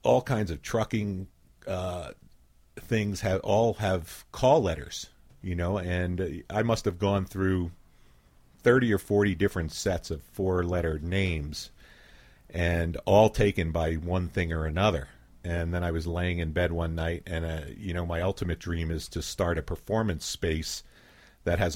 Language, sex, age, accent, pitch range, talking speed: English, male, 50-69, American, 80-100 Hz, 165 wpm